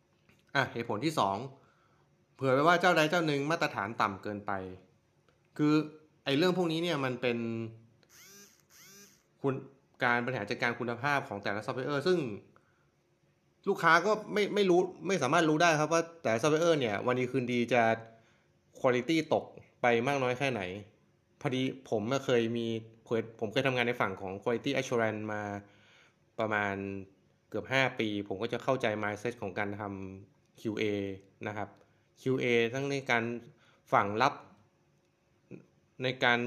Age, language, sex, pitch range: 20-39, Thai, male, 110-145 Hz